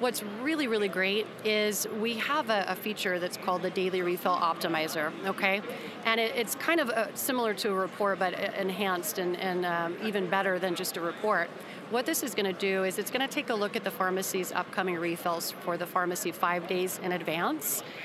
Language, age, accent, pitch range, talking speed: English, 30-49, American, 185-220 Hz, 195 wpm